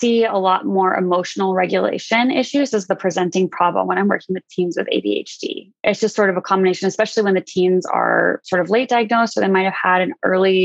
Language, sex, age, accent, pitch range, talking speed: English, female, 20-39, American, 185-200 Hz, 225 wpm